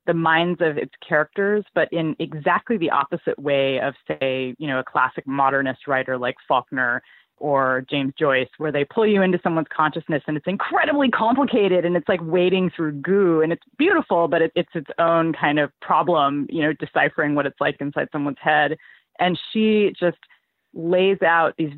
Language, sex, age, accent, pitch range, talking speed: English, female, 20-39, American, 150-180 Hz, 180 wpm